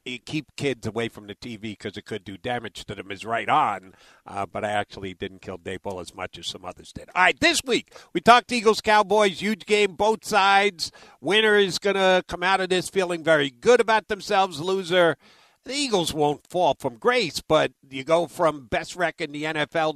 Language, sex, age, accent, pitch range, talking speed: English, male, 50-69, American, 140-195 Hz, 205 wpm